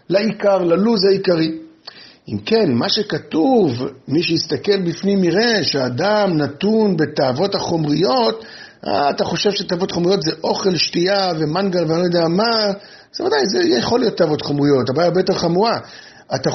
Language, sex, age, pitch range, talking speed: Hebrew, male, 50-69, 155-210 Hz, 140 wpm